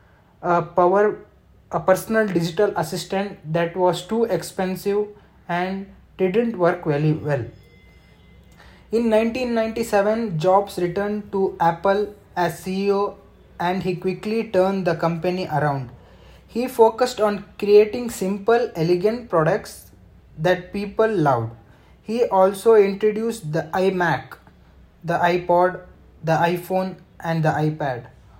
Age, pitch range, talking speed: 20-39, 165-205 Hz, 110 wpm